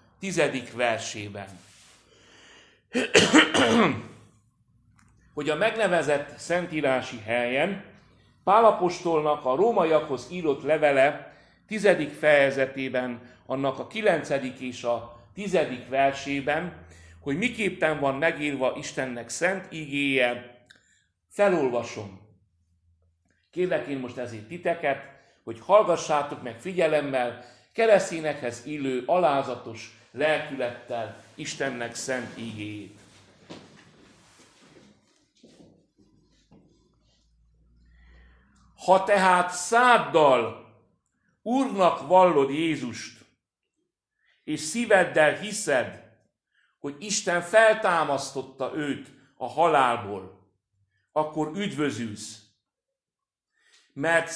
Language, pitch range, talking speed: Hungarian, 120-175 Hz, 70 wpm